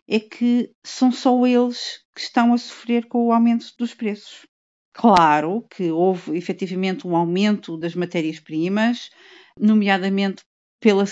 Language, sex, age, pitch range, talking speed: Portuguese, female, 40-59, 195-240 Hz, 130 wpm